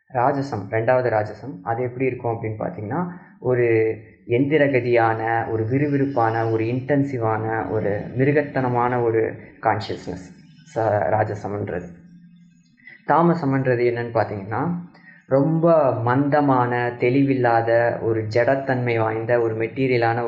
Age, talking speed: 20-39, 90 wpm